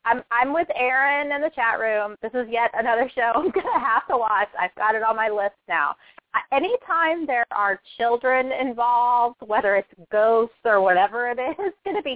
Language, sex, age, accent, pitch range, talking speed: English, female, 30-49, American, 215-265 Hz, 205 wpm